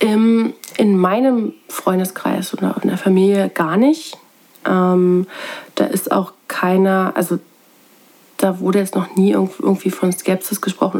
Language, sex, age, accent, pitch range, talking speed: German, female, 30-49, German, 180-210 Hz, 130 wpm